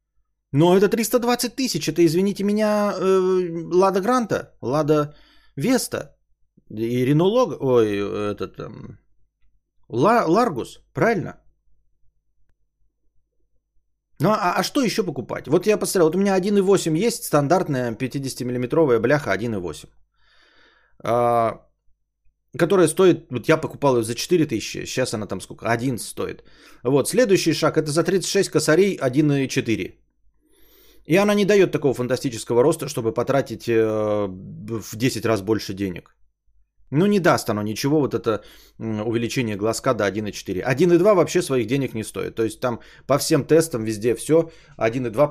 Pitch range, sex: 115-175 Hz, male